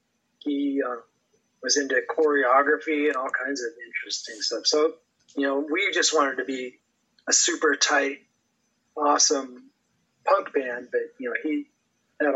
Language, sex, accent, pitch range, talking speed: English, male, American, 130-155 Hz, 145 wpm